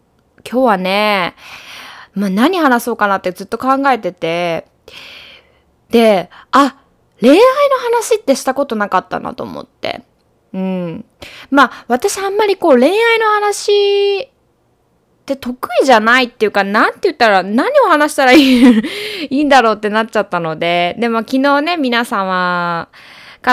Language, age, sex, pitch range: Japanese, 20-39, female, 185-280 Hz